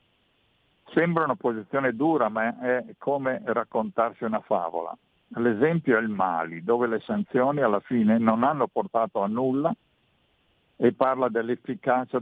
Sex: male